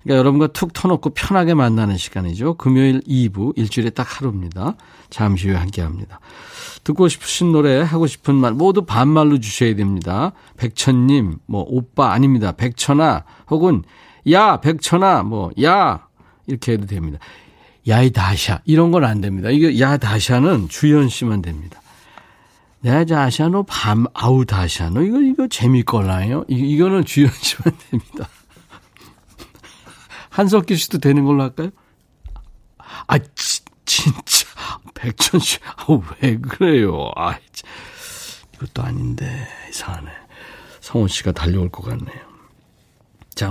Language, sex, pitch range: Korean, male, 105-155 Hz